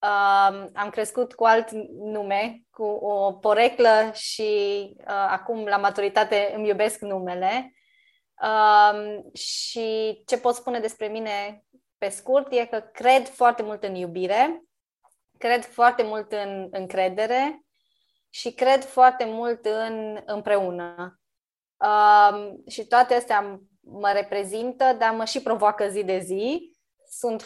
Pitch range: 205-245 Hz